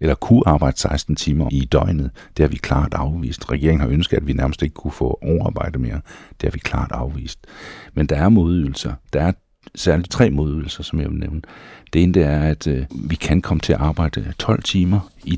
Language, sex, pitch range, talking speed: Danish, male, 70-85 Hz, 210 wpm